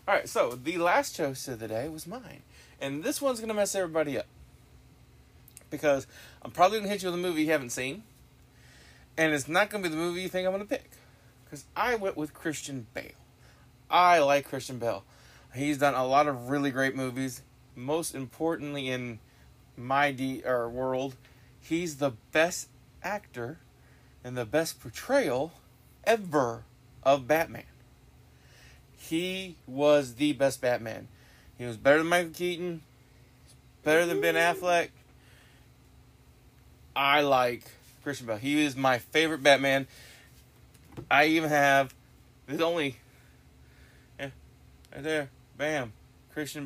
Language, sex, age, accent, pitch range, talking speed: English, male, 30-49, American, 125-165 Hz, 145 wpm